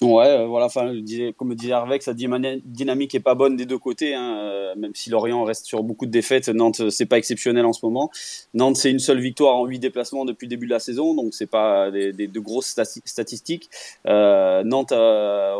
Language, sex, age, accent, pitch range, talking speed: French, male, 20-39, French, 110-130 Hz, 225 wpm